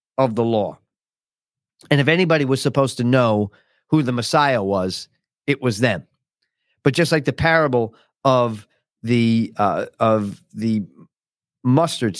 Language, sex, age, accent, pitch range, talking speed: English, male, 40-59, American, 110-145 Hz, 140 wpm